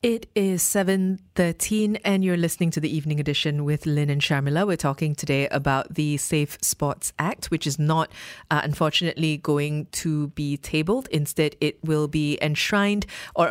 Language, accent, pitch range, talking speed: English, Malaysian, 145-180 Hz, 165 wpm